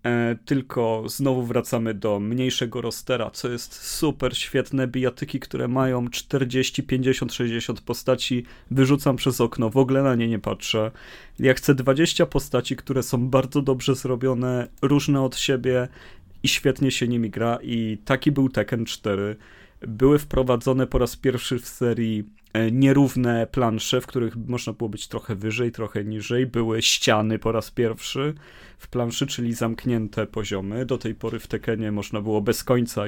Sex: male